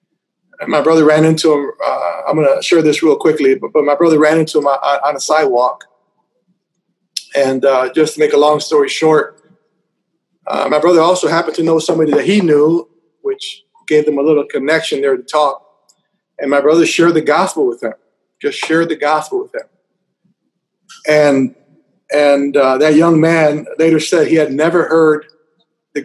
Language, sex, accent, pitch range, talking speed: English, male, American, 150-185 Hz, 185 wpm